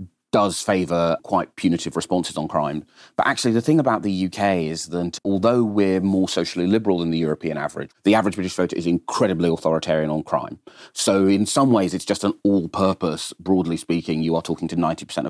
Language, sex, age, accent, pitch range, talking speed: English, male, 30-49, British, 85-110 Hz, 190 wpm